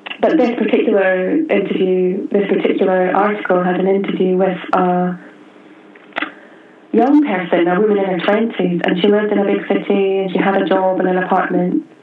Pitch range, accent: 180-200 Hz, British